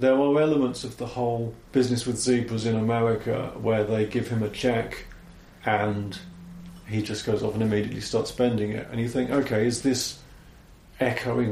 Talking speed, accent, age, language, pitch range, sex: 175 wpm, British, 40-59, English, 115-150 Hz, male